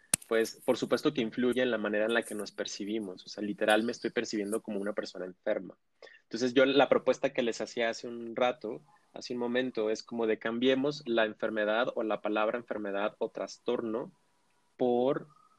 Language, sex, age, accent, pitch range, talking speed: Spanish, male, 30-49, Mexican, 110-140 Hz, 190 wpm